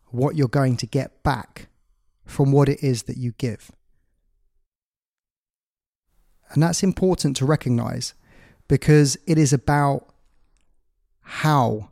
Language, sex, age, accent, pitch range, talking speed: English, male, 20-39, British, 110-140 Hz, 115 wpm